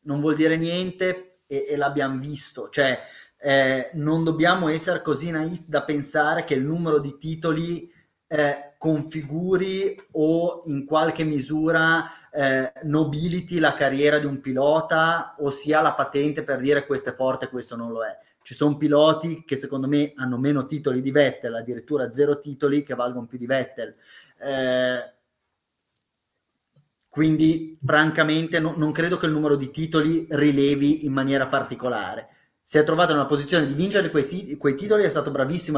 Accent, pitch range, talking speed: native, 140-160 Hz, 165 wpm